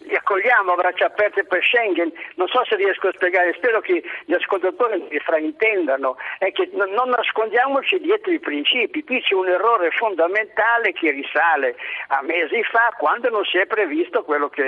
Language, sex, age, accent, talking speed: Italian, male, 50-69, native, 175 wpm